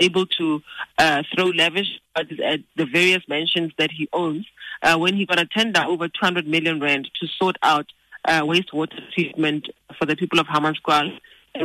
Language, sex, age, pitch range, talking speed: English, female, 30-49, 150-180 Hz, 180 wpm